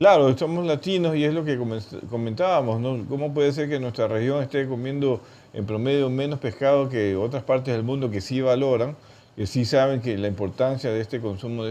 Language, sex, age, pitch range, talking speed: Spanish, male, 50-69, 105-125 Hz, 195 wpm